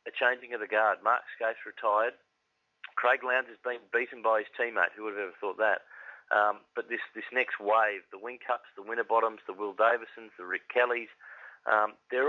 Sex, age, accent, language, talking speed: male, 30-49, Australian, English, 190 wpm